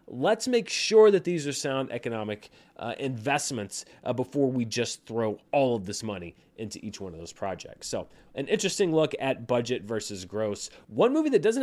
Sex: male